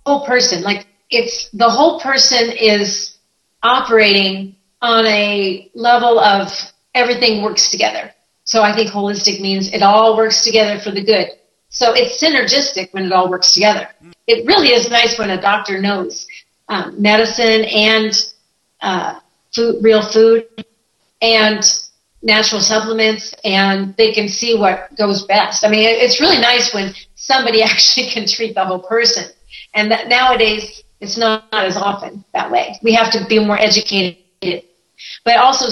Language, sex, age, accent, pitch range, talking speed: English, female, 40-59, American, 200-230 Hz, 155 wpm